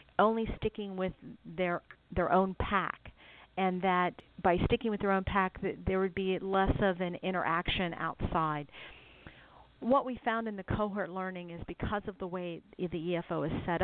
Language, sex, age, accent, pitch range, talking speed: English, female, 50-69, American, 165-195 Hz, 170 wpm